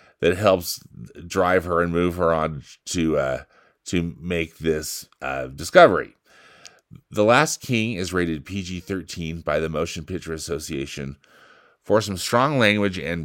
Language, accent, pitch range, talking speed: English, American, 80-100 Hz, 140 wpm